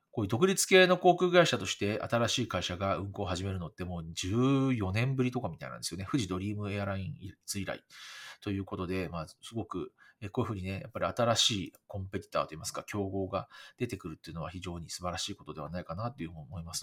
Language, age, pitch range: Japanese, 40-59, 95-135 Hz